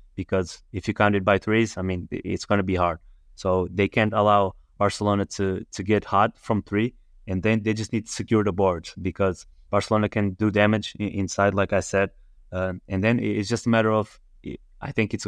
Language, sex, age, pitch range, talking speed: English, male, 20-39, 95-110 Hz, 210 wpm